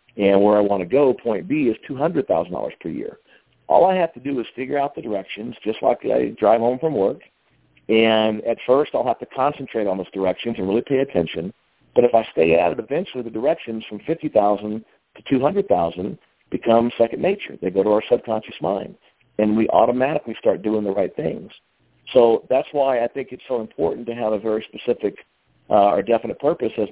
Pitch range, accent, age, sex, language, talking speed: 105-120 Hz, American, 50-69, male, English, 205 wpm